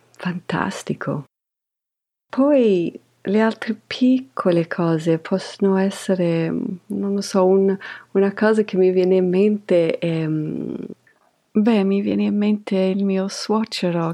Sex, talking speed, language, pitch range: female, 120 wpm, Italian, 170-220 Hz